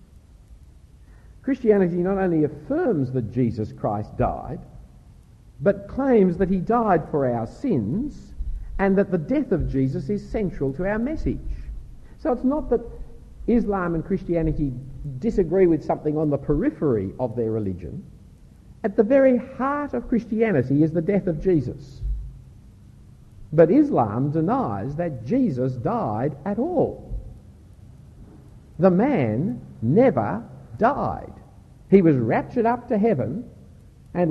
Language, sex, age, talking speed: English, male, 50-69, 130 wpm